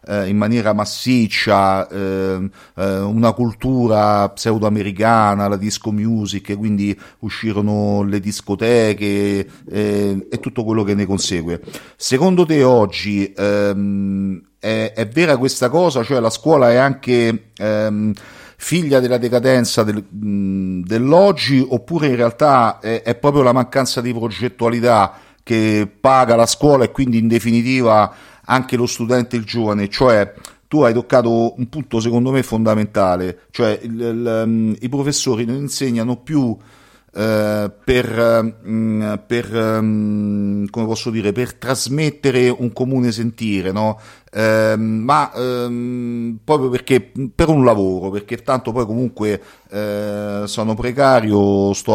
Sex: male